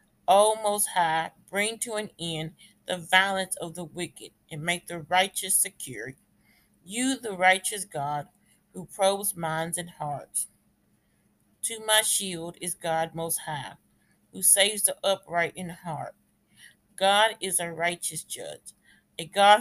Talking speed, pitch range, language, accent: 140 wpm, 165-200 Hz, English, American